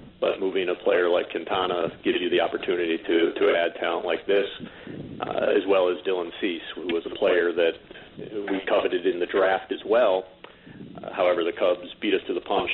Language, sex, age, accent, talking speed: English, male, 40-59, American, 205 wpm